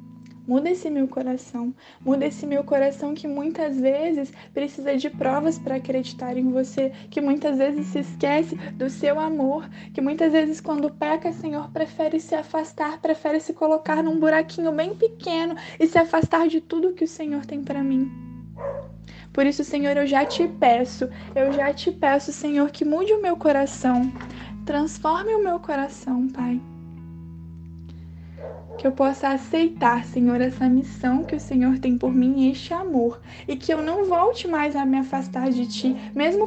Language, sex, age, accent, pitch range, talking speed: Portuguese, female, 10-29, Brazilian, 255-315 Hz, 170 wpm